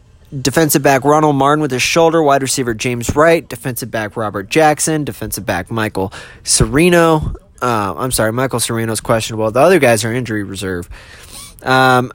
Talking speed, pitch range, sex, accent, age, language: 165 wpm, 110-145 Hz, male, American, 20-39, English